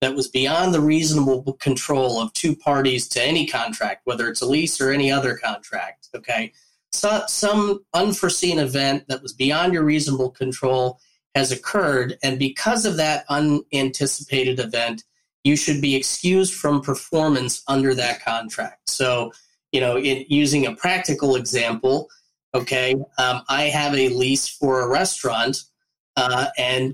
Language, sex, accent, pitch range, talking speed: English, male, American, 130-150 Hz, 145 wpm